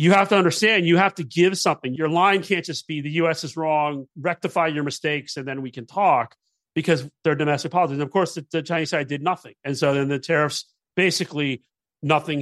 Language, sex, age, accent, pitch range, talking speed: English, male, 40-59, American, 130-165 Hz, 220 wpm